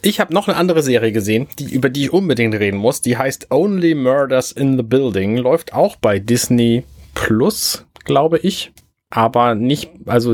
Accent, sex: German, male